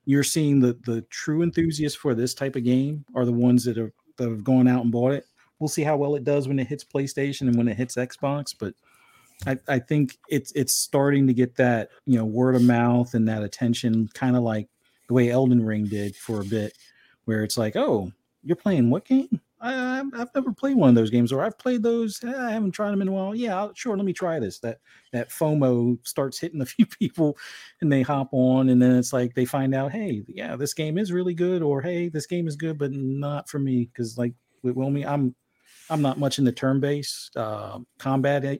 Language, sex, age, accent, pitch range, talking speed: English, male, 40-59, American, 120-155 Hz, 230 wpm